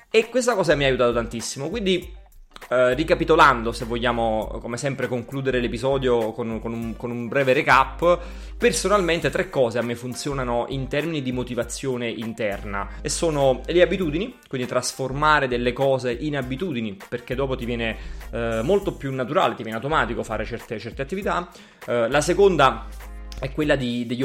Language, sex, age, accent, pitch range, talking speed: Italian, male, 30-49, native, 115-140 Hz, 160 wpm